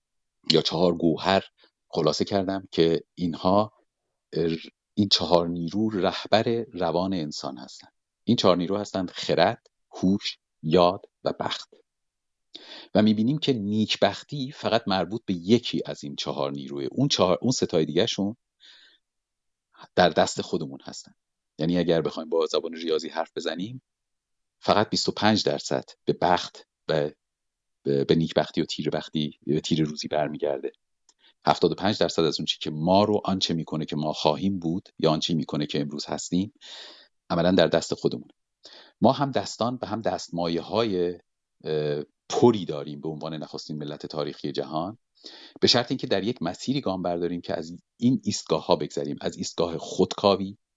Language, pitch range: Persian, 80-100 Hz